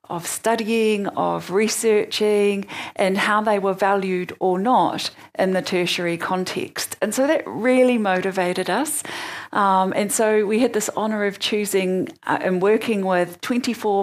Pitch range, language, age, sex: 185-220 Hz, English, 40-59, female